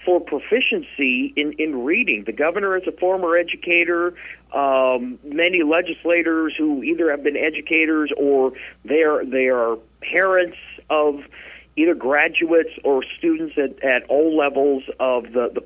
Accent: American